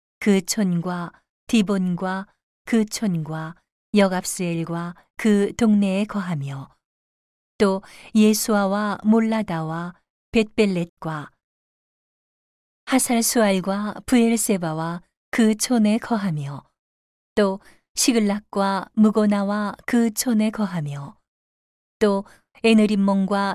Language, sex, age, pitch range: Korean, female, 40-59, 175-215 Hz